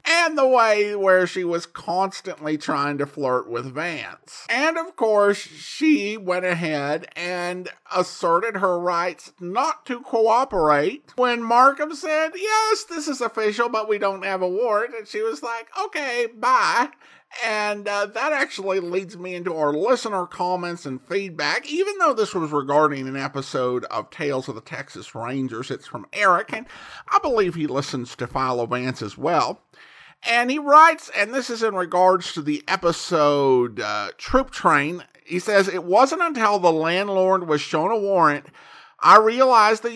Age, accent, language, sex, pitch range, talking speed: 50-69, American, English, male, 150-225 Hz, 165 wpm